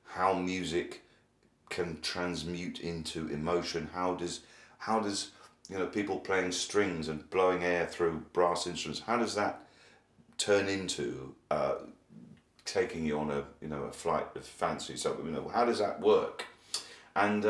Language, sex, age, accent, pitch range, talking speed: English, male, 40-59, British, 80-105 Hz, 155 wpm